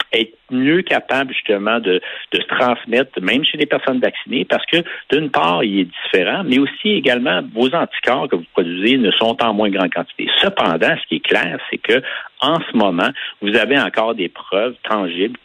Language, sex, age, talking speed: French, male, 60-79, 195 wpm